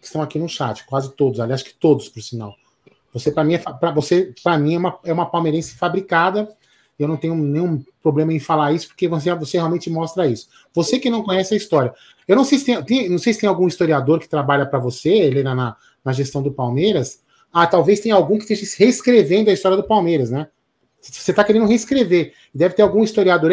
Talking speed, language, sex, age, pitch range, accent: 225 wpm, Portuguese, male, 30-49, 145-210 Hz, Brazilian